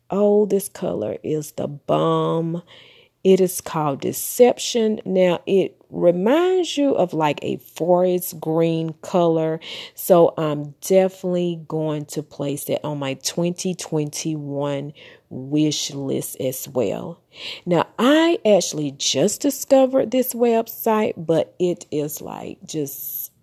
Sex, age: female, 40-59